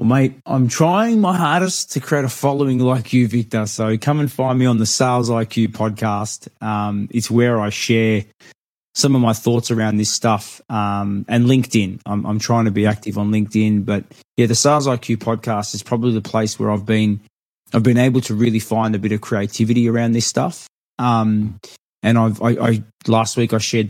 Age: 20-39